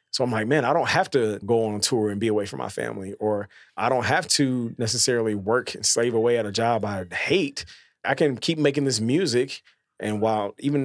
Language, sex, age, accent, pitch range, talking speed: English, male, 30-49, American, 105-135 Hz, 230 wpm